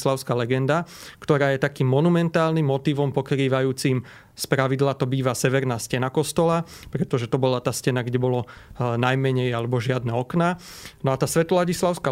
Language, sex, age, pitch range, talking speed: Slovak, male, 30-49, 130-145 Hz, 140 wpm